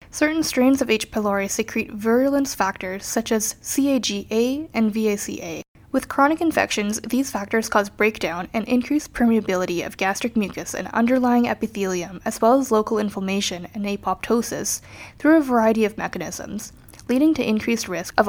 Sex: female